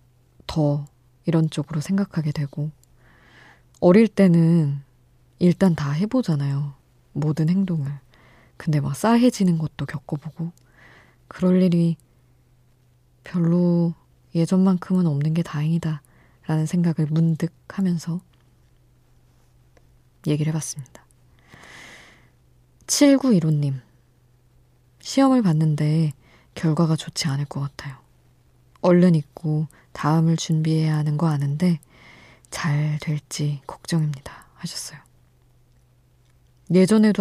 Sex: female